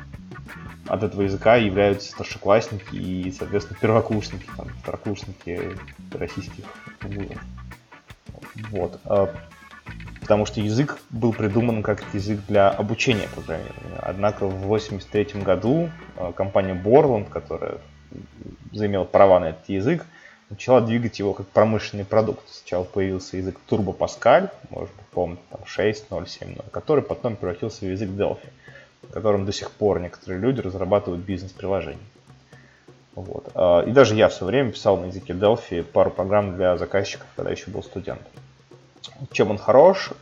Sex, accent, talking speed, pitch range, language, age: male, native, 125 wpm, 95-110 Hz, Russian, 20-39